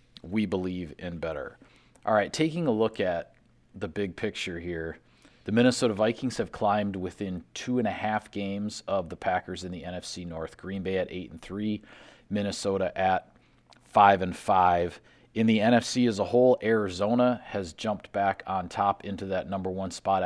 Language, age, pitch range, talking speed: English, 40-59, 90-105 Hz, 180 wpm